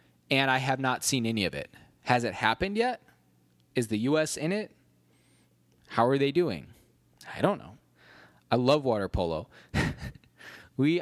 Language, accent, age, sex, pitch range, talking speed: English, American, 20-39, male, 95-140 Hz, 160 wpm